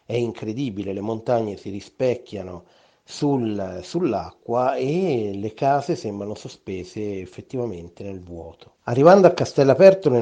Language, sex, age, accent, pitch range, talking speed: Italian, male, 30-49, native, 100-130 Hz, 115 wpm